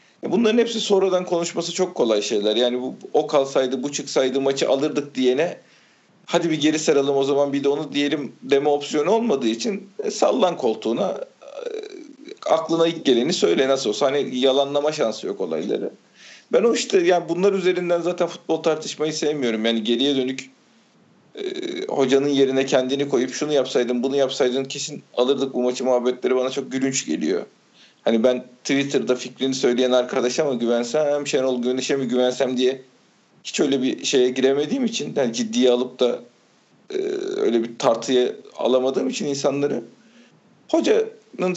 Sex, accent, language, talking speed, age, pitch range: male, native, Turkish, 155 wpm, 40-59, 130-185 Hz